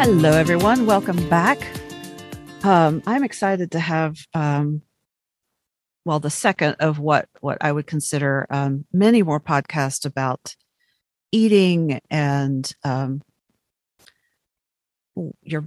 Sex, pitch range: female, 150-195 Hz